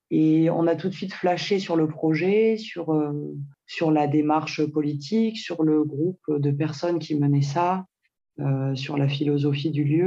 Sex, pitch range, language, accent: female, 145-170 Hz, French, French